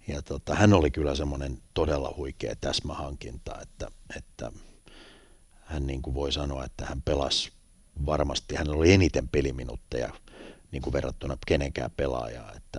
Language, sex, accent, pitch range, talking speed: Finnish, male, native, 70-90 Hz, 140 wpm